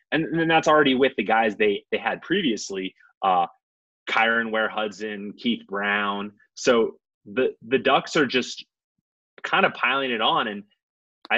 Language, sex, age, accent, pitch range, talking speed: English, male, 30-49, American, 110-175 Hz, 155 wpm